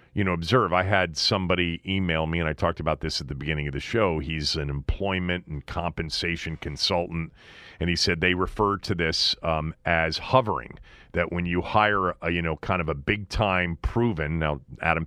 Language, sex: English, male